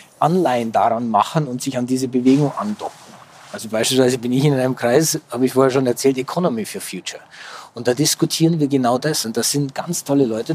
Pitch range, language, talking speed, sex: 125-155 Hz, German, 205 wpm, male